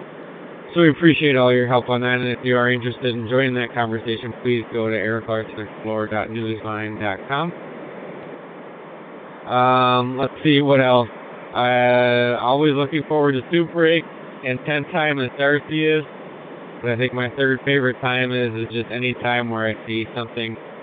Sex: male